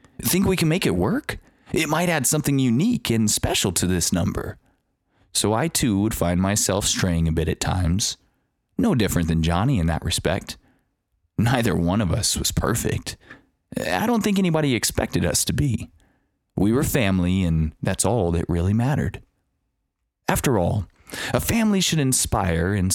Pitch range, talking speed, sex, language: 85-120 Hz, 165 wpm, male, English